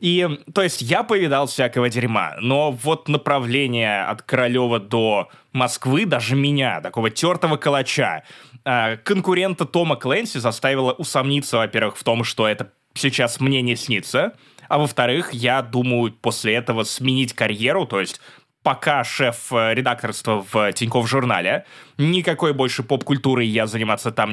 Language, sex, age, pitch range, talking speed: Russian, male, 20-39, 120-170 Hz, 140 wpm